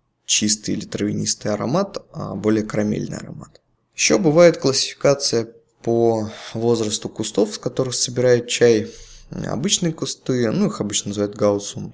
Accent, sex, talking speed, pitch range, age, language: native, male, 125 wpm, 105-135 Hz, 20-39, Russian